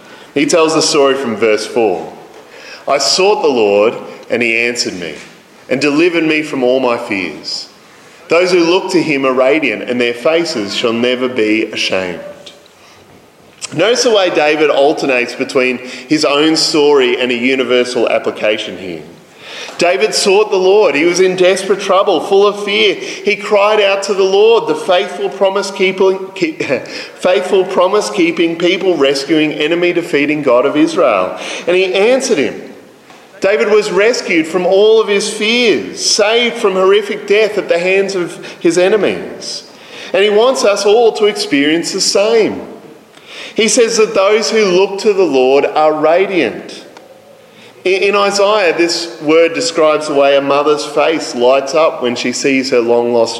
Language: English